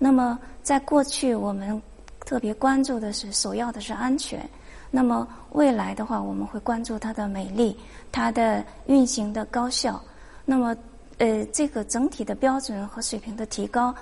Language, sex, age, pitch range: Chinese, female, 20-39, 215-260 Hz